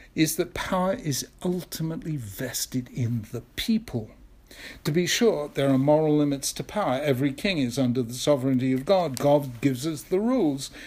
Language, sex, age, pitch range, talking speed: English, male, 60-79, 120-165 Hz, 170 wpm